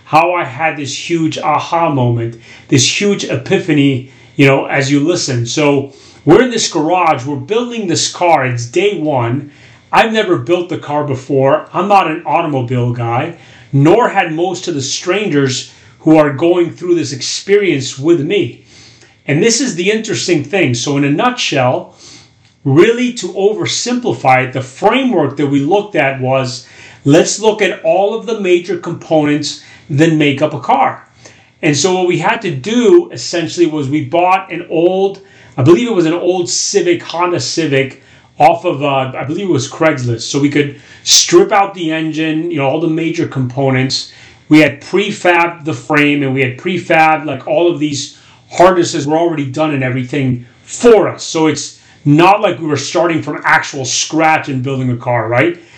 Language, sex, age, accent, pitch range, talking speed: English, male, 30-49, American, 135-175 Hz, 175 wpm